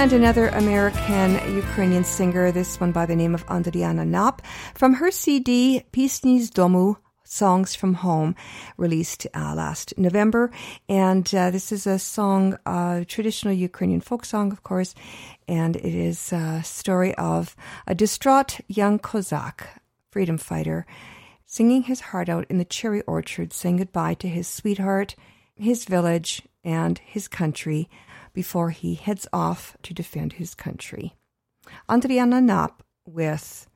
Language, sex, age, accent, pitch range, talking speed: English, female, 50-69, American, 165-215 Hz, 140 wpm